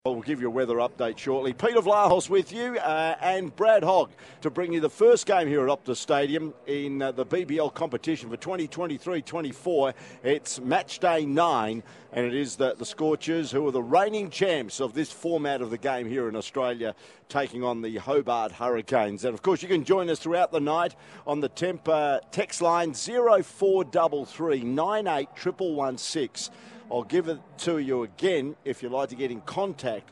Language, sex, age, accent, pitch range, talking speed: English, male, 50-69, Australian, 130-180 Hz, 185 wpm